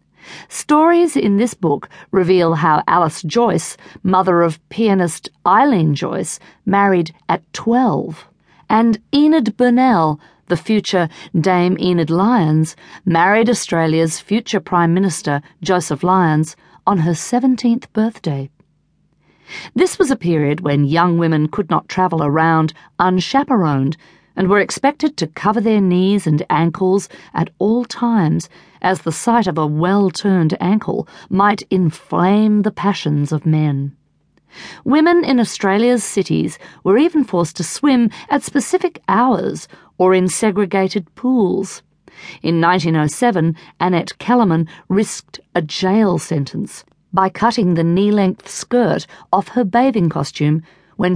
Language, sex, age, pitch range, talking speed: English, female, 50-69, 165-220 Hz, 125 wpm